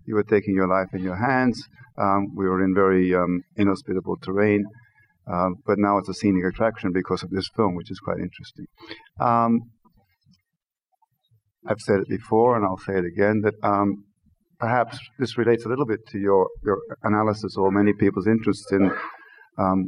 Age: 50-69